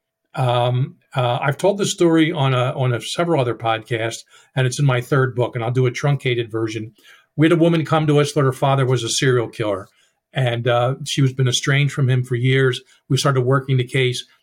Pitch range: 125-150 Hz